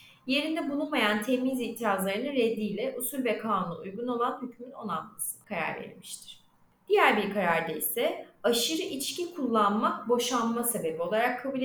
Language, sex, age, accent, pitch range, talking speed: Turkish, female, 30-49, native, 205-260 Hz, 130 wpm